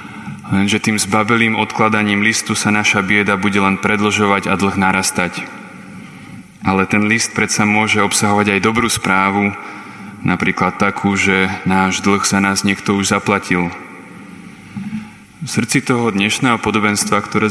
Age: 20-39